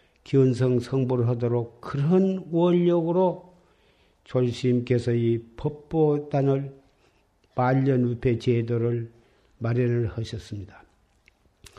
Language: Korean